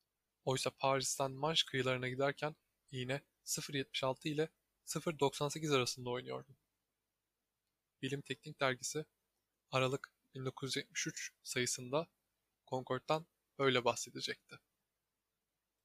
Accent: native